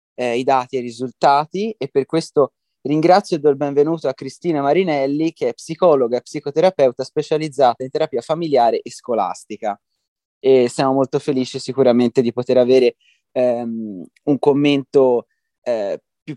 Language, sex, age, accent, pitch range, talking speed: Italian, male, 20-39, native, 130-165 Hz, 145 wpm